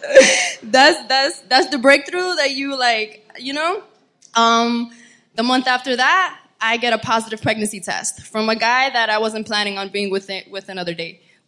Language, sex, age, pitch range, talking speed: English, female, 20-39, 210-260 Hz, 185 wpm